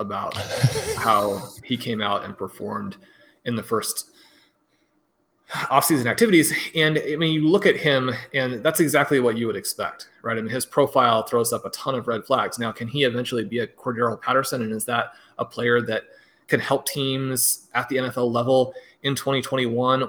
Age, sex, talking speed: 30-49, male, 180 wpm